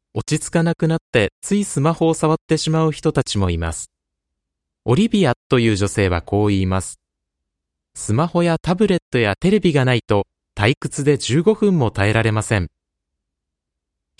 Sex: male